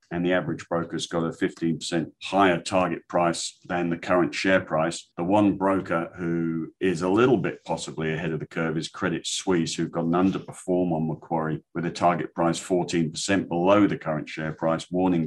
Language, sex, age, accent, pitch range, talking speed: English, male, 50-69, British, 80-90 Hz, 185 wpm